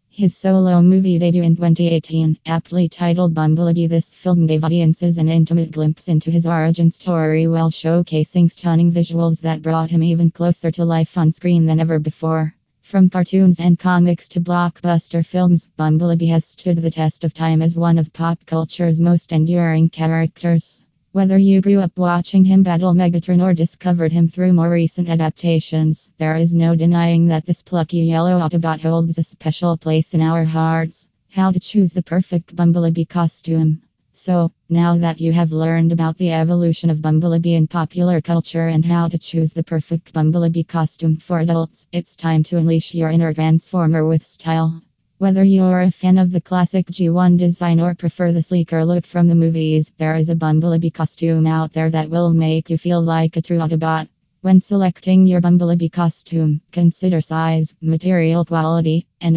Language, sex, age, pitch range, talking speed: English, female, 20-39, 160-175 Hz, 175 wpm